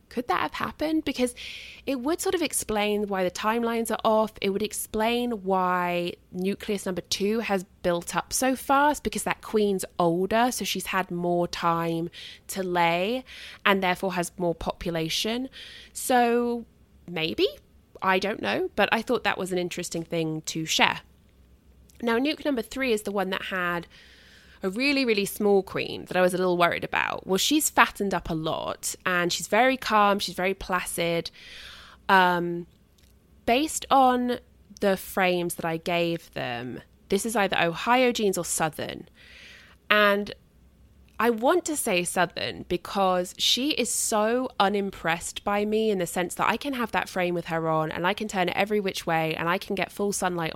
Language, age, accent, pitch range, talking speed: English, 20-39, British, 170-220 Hz, 175 wpm